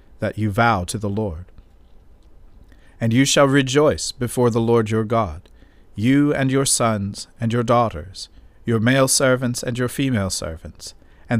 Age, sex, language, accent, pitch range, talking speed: 50-69, male, English, American, 90-125 Hz, 160 wpm